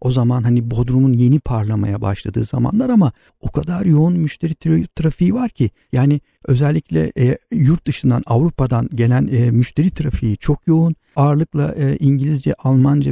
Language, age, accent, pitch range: Turkish, 50-69, native, 125-155 Hz